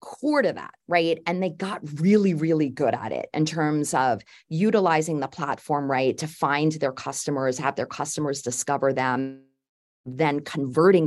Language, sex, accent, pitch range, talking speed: English, female, American, 140-180 Hz, 165 wpm